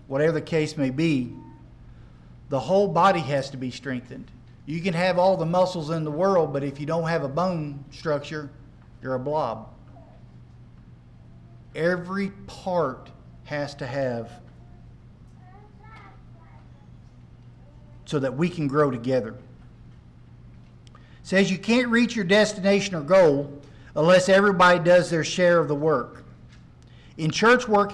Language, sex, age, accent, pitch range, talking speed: English, male, 50-69, American, 130-190 Hz, 135 wpm